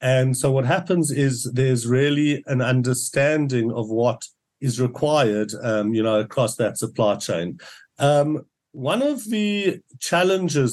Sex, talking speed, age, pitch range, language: male, 130 wpm, 50-69, 125-155 Hz, English